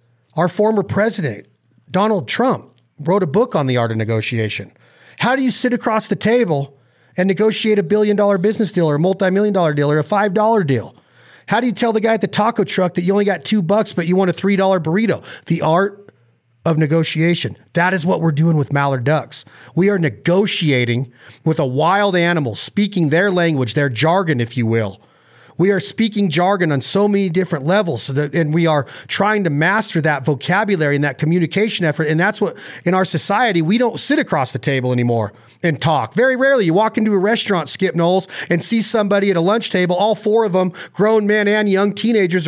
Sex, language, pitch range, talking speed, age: male, English, 145-205 Hz, 215 wpm, 40-59